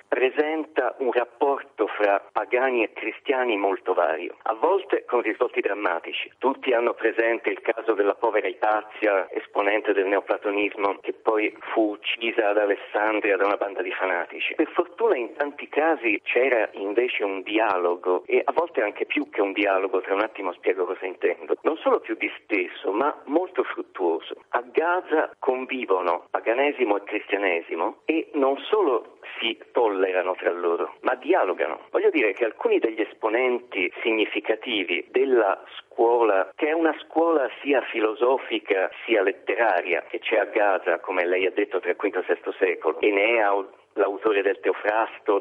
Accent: native